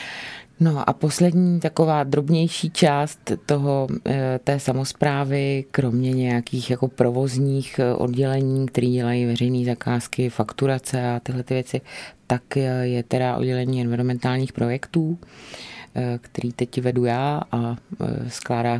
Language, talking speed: Czech, 110 wpm